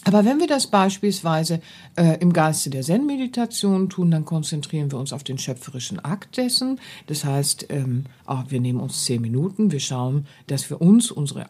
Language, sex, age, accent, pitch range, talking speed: German, female, 50-69, German, 140-180 Hz, 185 wpm